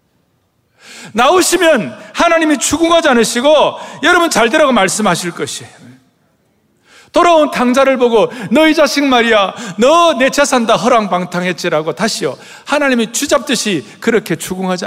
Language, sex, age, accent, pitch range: Korean, male, 40-59, native, 170-260 Hz